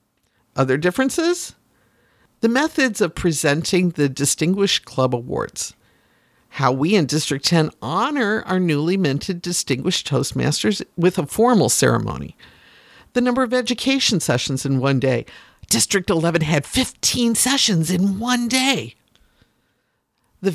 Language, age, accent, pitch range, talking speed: English, 50-69, American, 140-215 Hz, 125 wpm